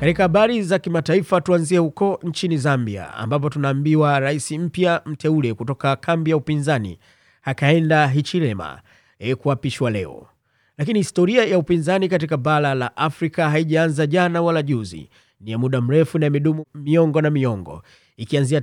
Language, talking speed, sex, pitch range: Swahili, 140 wpm, male, 135-170 Hz